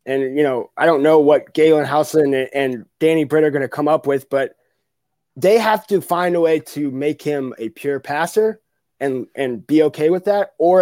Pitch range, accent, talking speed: 140-165 Hz, American, 215 wpm